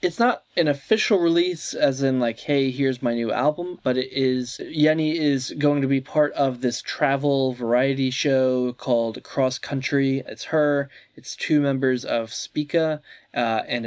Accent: American